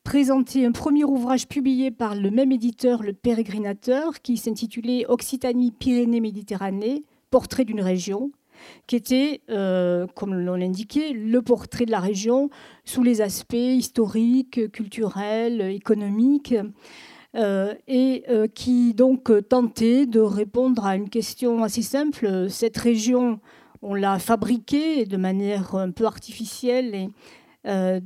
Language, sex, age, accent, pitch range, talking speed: French, female, 40-59, French, 210-255 Hz, 130 wpm